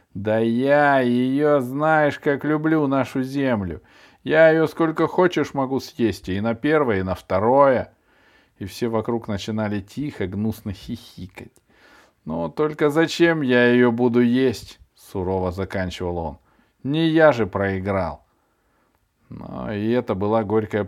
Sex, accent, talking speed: male, native, 130 wpm